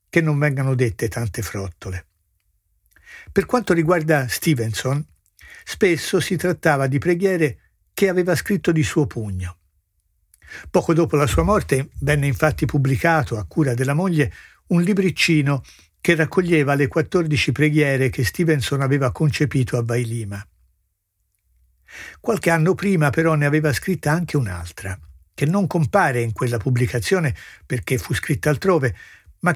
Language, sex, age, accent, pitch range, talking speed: Italian, male, 60-79, native, 105-165 Hz, 130 wpm